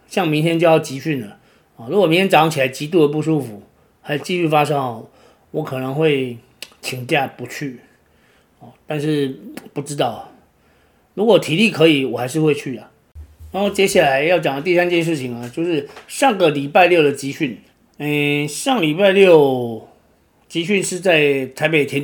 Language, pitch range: Chinese, 135-170 Hz